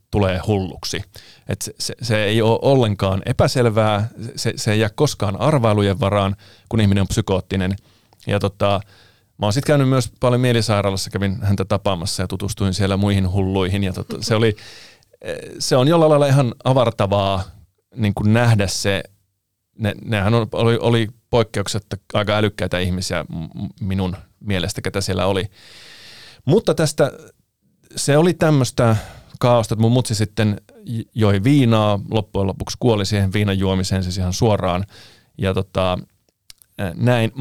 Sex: male